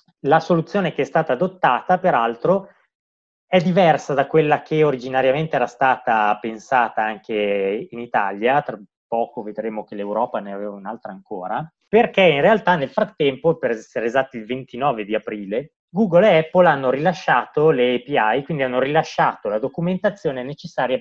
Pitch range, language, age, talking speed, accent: 115-170 Hz, Italian, 20-39, 150 wpm, native